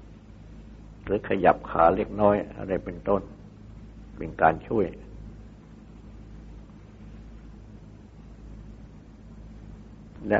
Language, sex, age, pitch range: Thai, male, 60-79, 95-110 Hz